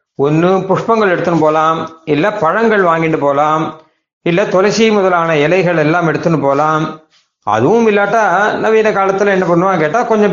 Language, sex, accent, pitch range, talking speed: Tamil, male, native, 155-205 Hz, 135 wpm